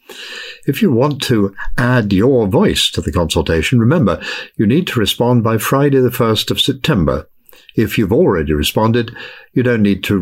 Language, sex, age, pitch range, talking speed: English, male, 60-79, 100-130 Hz, 170 wpm